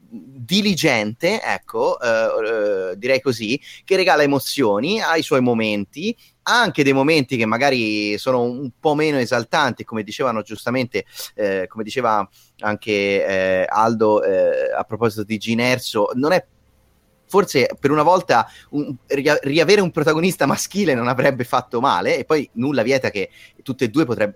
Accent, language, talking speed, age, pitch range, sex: native, Italian, 150 wpm, 30-49, 105-150 Hz, male